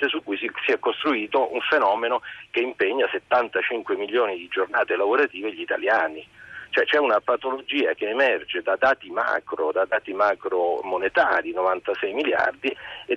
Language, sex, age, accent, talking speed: Italian, male, 40-59, native, 145 wpm